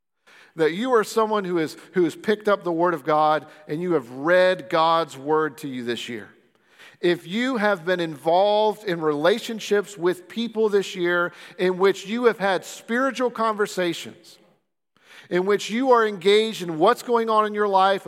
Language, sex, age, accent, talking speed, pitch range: English, male, 50-69, American, 175 wpm, 175-225 Hz